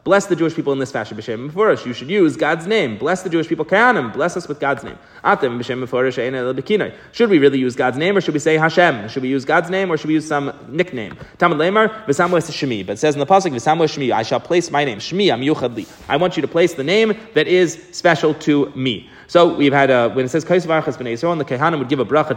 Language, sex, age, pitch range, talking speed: English, male, 30-49, 140-180 Hz, 230 wpm